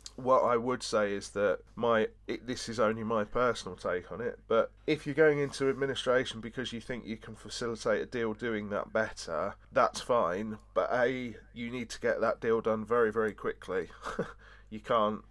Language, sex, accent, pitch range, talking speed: English, male, British, 105-125 Hz, 190 wpm